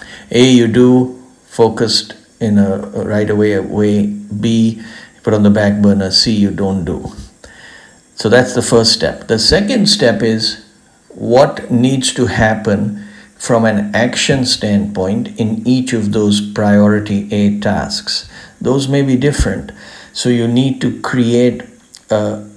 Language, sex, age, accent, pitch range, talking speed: English, male, 60-79, Indian, 105-120 Hz, 145 wpm